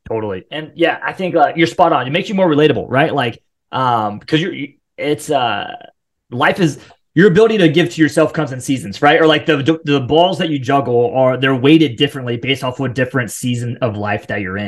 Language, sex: English, male